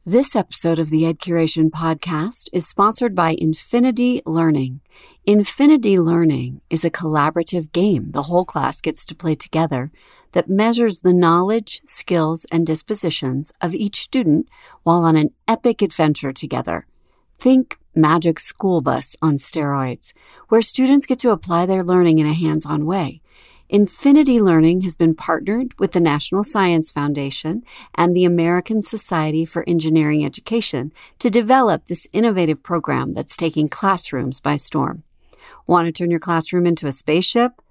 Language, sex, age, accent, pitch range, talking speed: English, female, 50-69, American, 160-215 Hz, 150 wpm